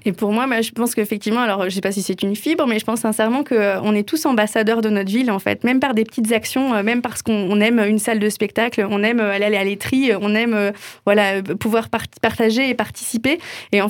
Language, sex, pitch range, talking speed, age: French, female, 210-250 Hz, 235 wpm, 20-39